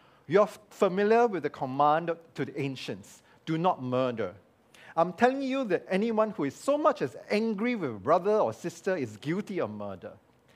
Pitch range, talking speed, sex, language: 130-195 Hz, 180 wpm, male, English